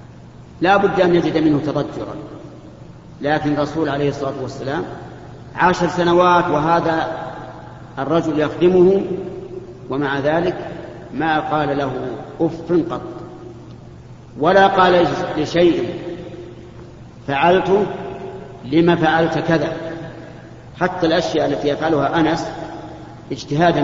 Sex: male